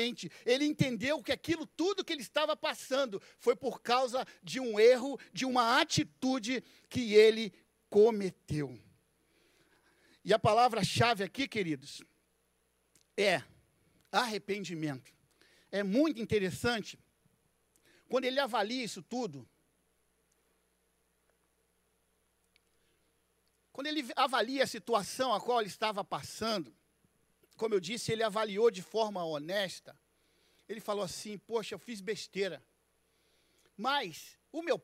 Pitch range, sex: 215-315 Hz, male